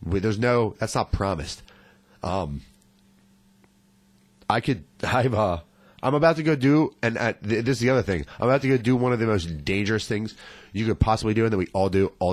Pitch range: 95-130 Hz